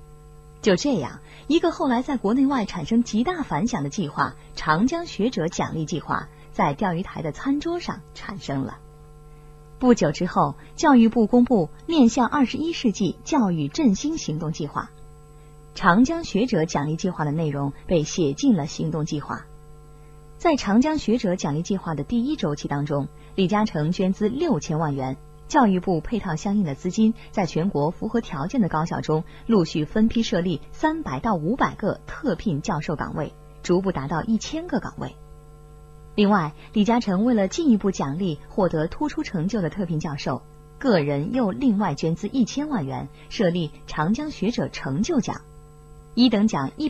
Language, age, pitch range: Chinese, 20-39, 150-225 Hz